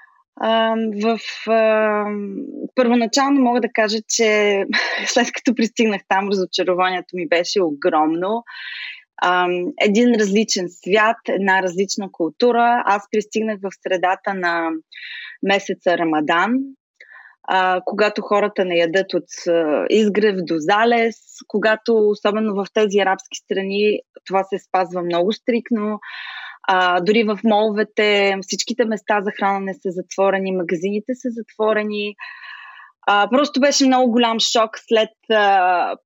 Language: Bulgarian